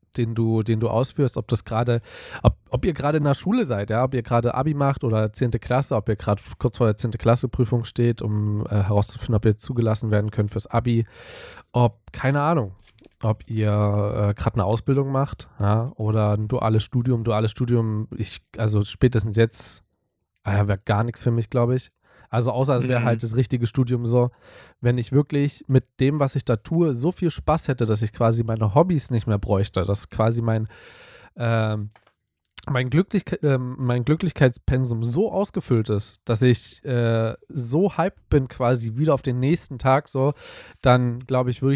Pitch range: 110-130 Hz